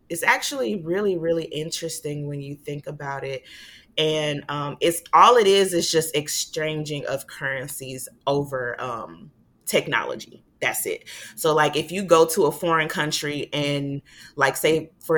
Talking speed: 155 wpm